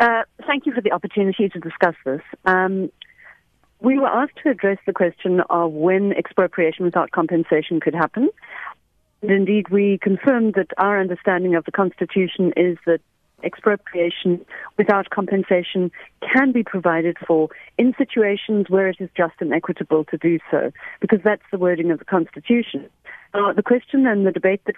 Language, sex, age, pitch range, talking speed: English, female, 40-59, 175-210 Hz, 160 wpm